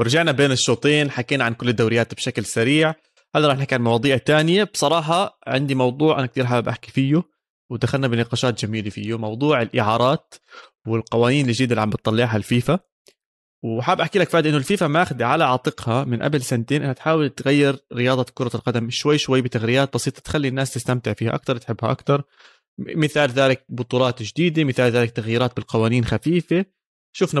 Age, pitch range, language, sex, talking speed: 20-39, 120-155 Hz, Arabic, male, 160 wpm